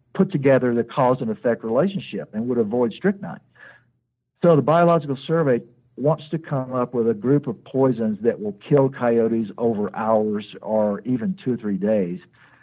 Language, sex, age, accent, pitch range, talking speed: English, male, 60-79, American, 110-140 Hz, 170 wpm